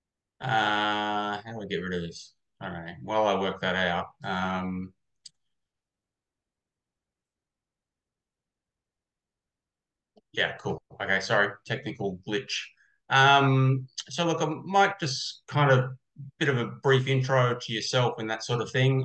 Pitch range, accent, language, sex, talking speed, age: 105-130 Hz, Australian, English, male, 130 wpm, 20-39